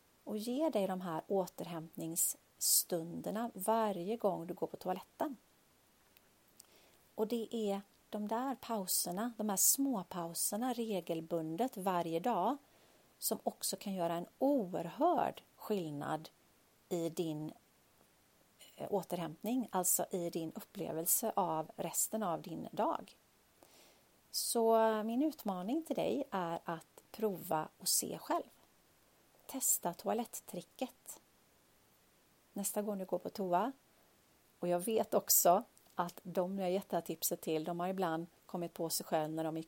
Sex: female